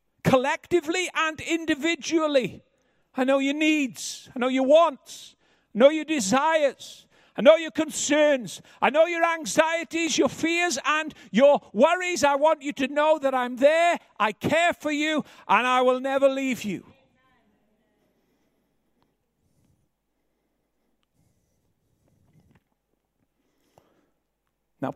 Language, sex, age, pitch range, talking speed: English, male, 60-79, 225-310 Hz, 115 wpm